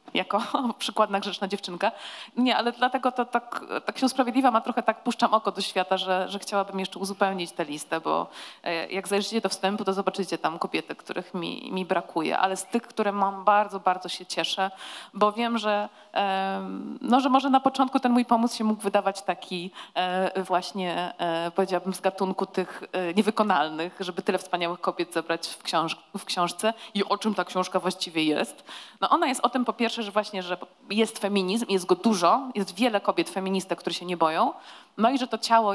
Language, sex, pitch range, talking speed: Polish, female, 180-215 Hz, 185 wpm